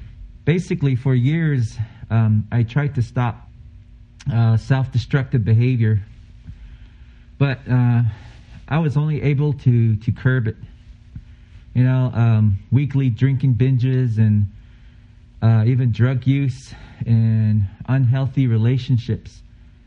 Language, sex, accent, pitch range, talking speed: English, male, American, 110-130 Hz, 105 wpm